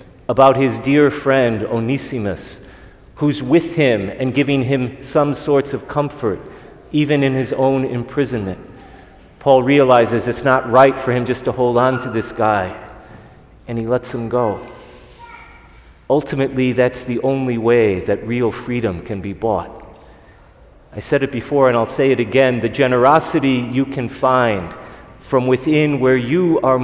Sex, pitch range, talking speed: male, 115-140 Hz, 155 wpm